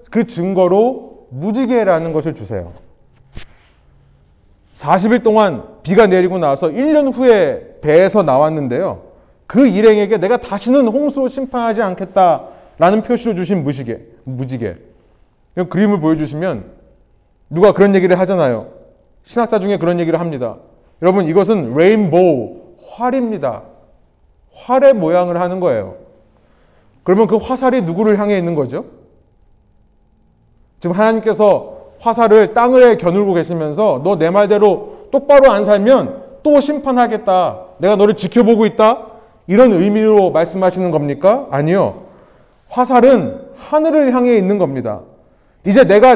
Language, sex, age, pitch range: Korean, male, 30-49, 175-250 Hz